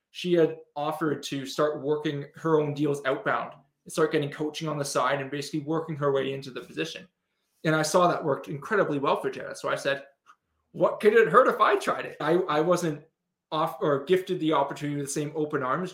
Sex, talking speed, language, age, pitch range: male, 220 wpm, English, 20-39, 140-165 Hz